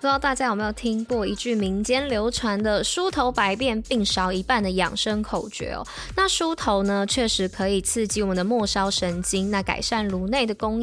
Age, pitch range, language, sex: 20-39, 195-255 Hz, Chinese, female